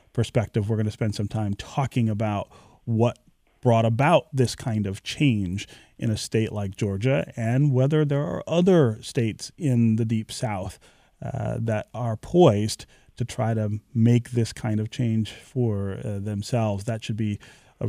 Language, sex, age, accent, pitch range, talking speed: English, male, 30-49, American, 110-135 Hz, 170 wpm